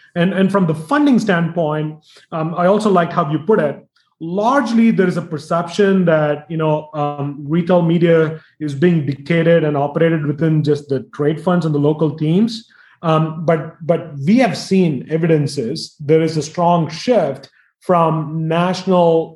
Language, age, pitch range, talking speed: English, 30-49, 150-190 Hz, 165 wpm